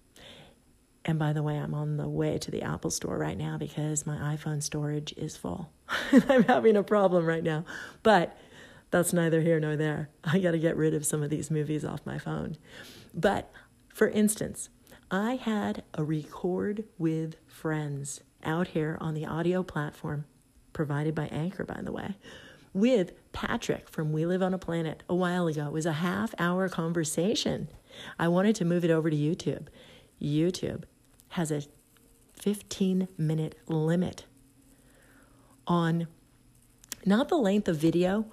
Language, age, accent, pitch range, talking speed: English, 40-59, American, 150-180 Hz, 165 wpm